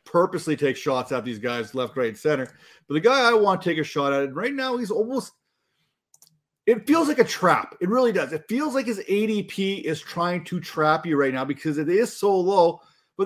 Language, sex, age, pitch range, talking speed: English, male, 30-49, 155-210 Hz, 220 wpm